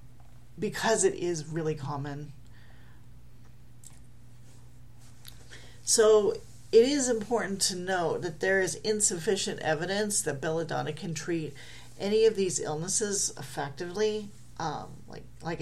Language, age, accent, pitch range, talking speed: English, 40-59, American, 130-175 Hz, 105 wpm